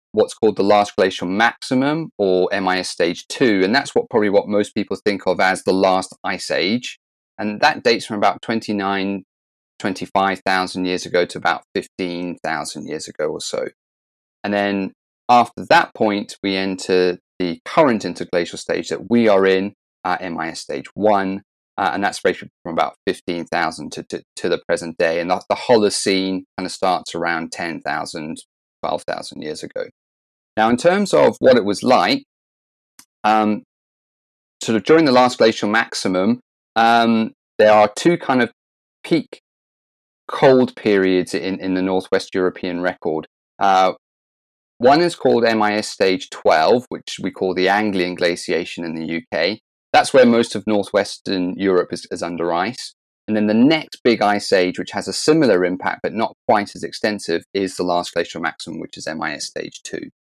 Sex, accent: male, British